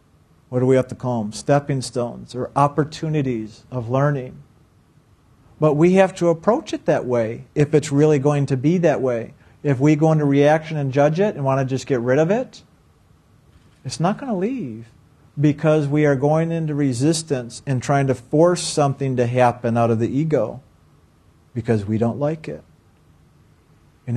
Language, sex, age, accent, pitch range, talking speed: English, male, 50-69, American, 125-160 Hz, 180 wpm